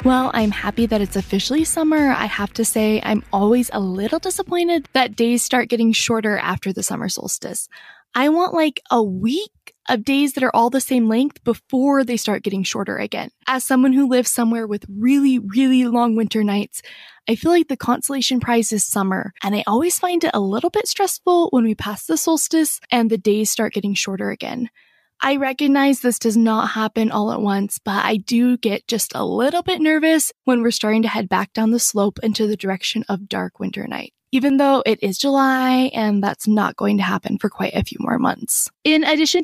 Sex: female